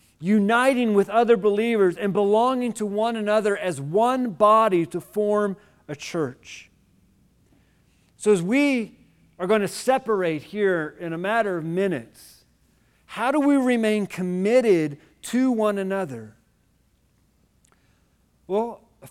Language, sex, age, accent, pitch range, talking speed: English, male, 50-69, American, 180-230 Hz, 120 wpm